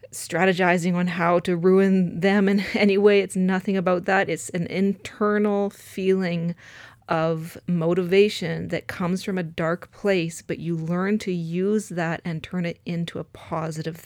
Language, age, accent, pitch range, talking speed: English, 30-49, American, 160-185 Hz, 160 wpm